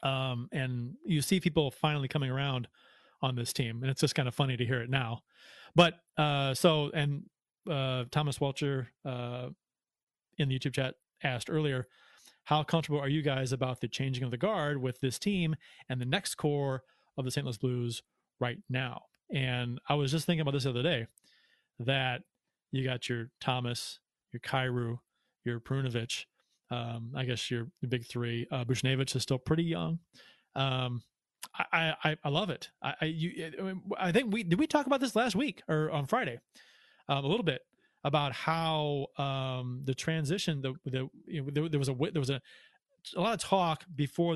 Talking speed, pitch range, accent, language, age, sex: 190 wpm, 130-160 Hz, American, English, 30-49, male